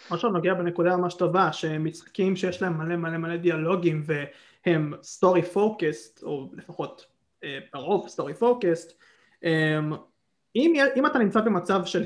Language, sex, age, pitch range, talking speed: Hebrew, male, 20-39, 160-190 Hz, 140 wpm